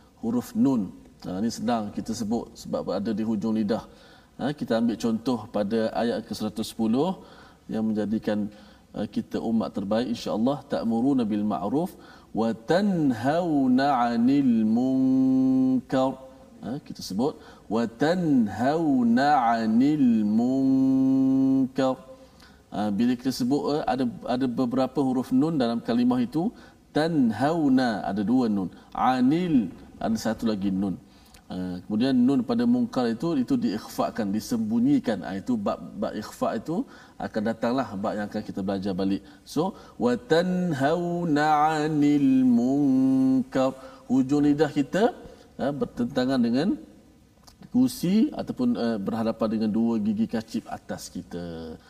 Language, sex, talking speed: Malayalam, male, 115 wpm